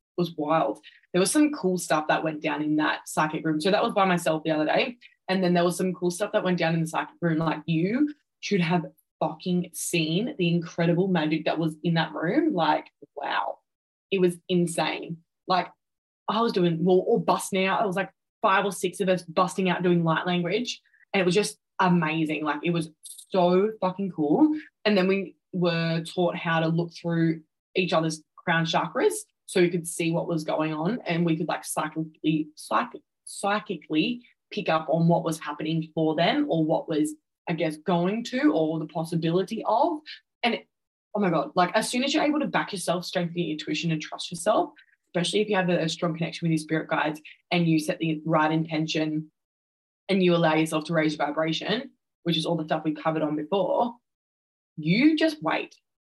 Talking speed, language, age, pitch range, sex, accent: 205 wpm, English, 20-39, 160-190 Hz, female, Australian